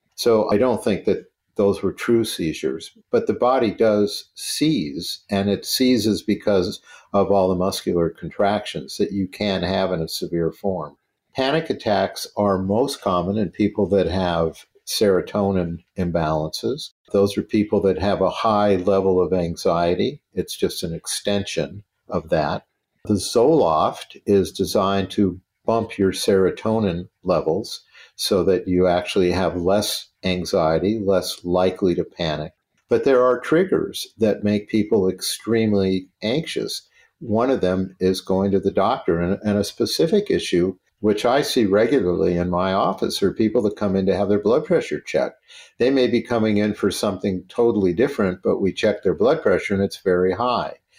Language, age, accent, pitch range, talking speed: English, 50-69, American, 90-105 Hz, 160 wpm